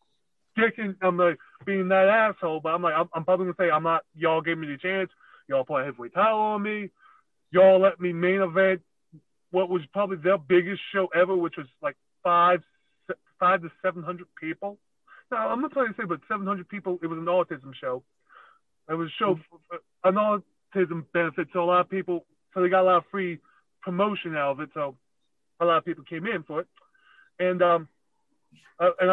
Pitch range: 160-190 Hz